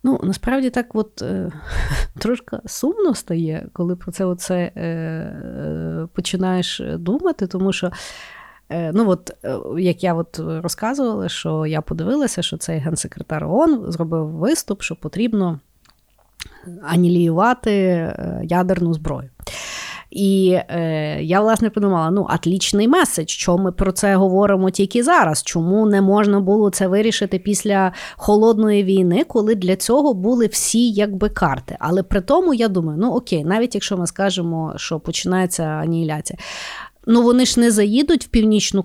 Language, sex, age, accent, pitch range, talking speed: Ukrainian, female, 30-49, native, 175-215 Hz, 135 wpm